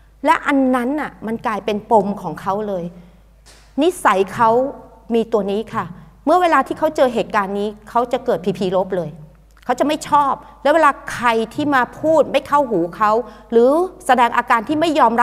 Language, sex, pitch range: Thai, female, 185-250 Hz